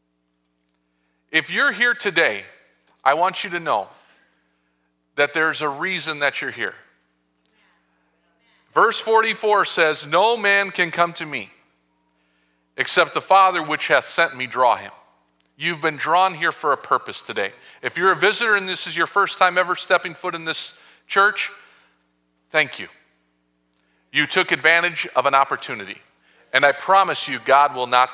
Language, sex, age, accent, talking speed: English, male, 40-59, American, 155 wpm